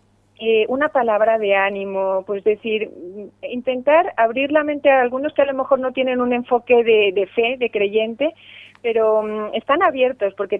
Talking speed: 165 wpm